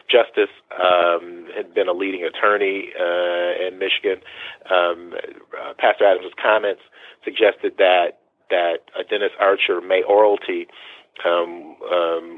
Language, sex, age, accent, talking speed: English, male, 30-49, American, 115 wpm